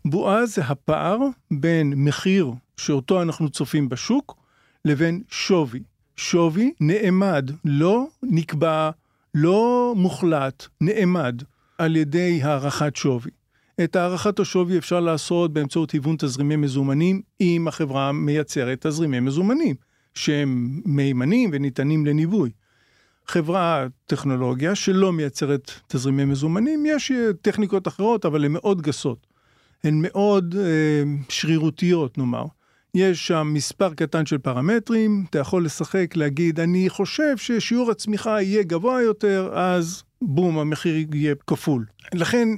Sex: male